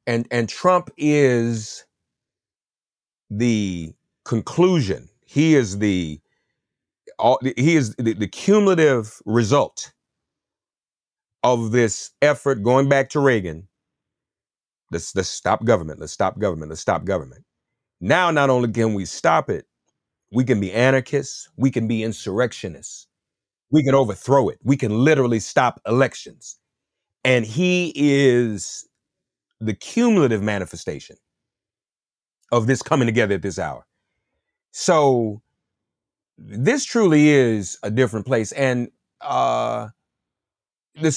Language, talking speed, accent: English, 115 wpm, American